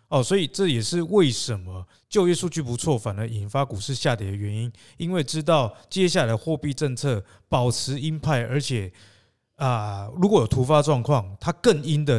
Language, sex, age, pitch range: Chinese, male, 20-39, 115-155 Hz